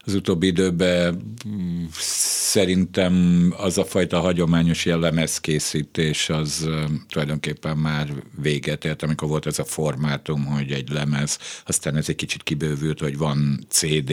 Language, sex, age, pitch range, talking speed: Hungarian, male, 50-69, 75-90 Hz, 135 wpm